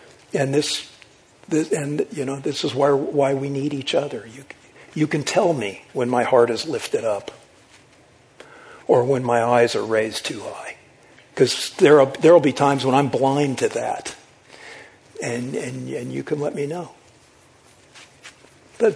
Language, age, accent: English, 60-79, American